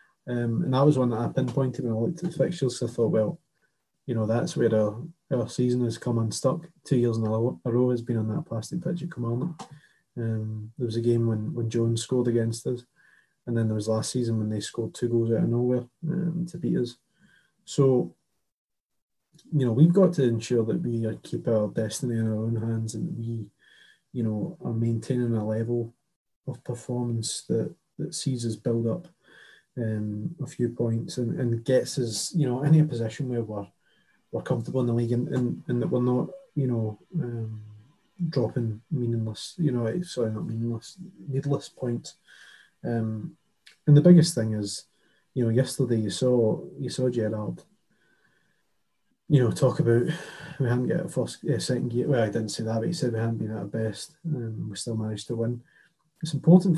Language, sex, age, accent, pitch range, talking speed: English, male, 20-39, British, 115-135 Hz, 200 wpm